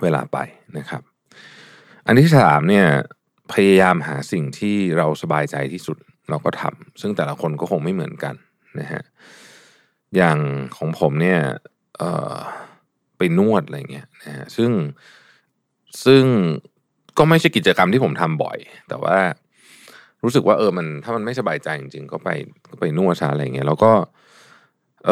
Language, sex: Thai, male